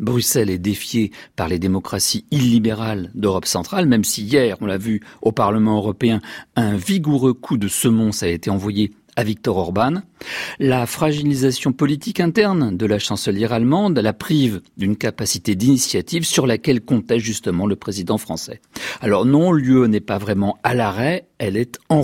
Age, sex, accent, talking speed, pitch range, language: 50-69, male, French, 165 wpm, 105-140 Hz, French